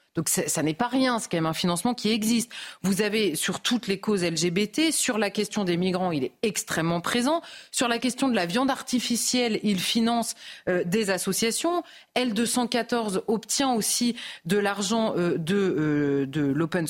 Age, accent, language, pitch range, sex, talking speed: 30-49, French, French, 180-235 Hz, female, 175 wpm